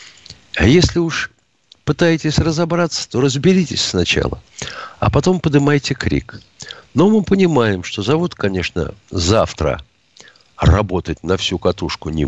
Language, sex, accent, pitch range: Russian, male, native, 100-145 Hz